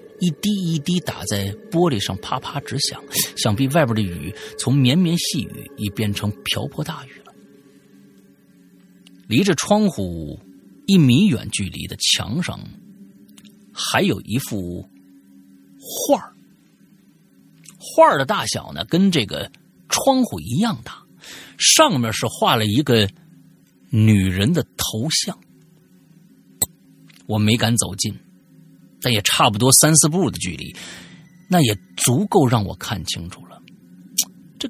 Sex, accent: male, native